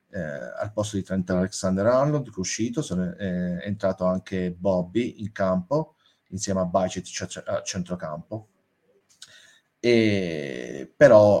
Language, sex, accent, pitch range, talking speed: Italian, male, native, 95-115 Hz, 135 wpm